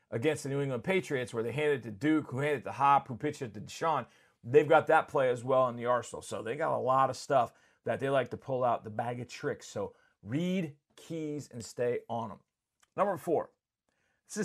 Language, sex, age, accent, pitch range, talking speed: English, male, 40-59, American, 125-155 Hz, 235 wpm